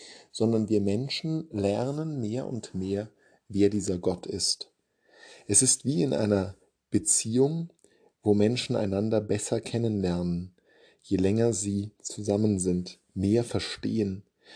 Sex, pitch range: male, 100-120 Hz